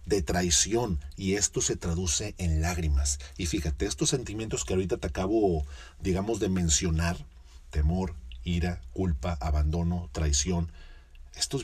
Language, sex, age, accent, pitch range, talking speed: Spanish, male, 40-59, Mexican, 75-105 Hz, 130 wpm